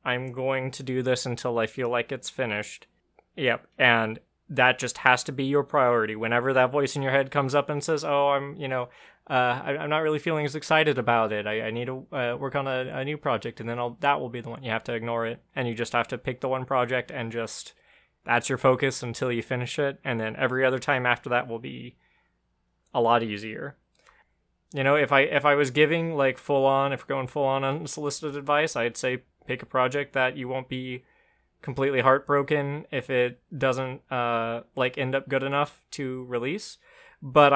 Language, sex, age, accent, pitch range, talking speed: English, male, 20-39, American, 120-140 Hz, 215 wpm